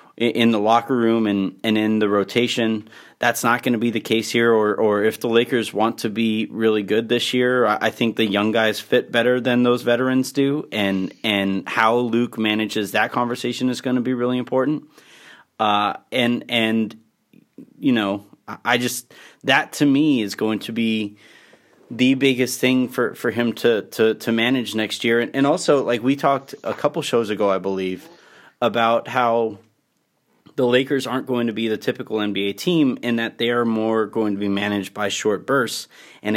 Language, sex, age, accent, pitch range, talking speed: English, male, 30-49, American, 105-125 Hz, 190 wpm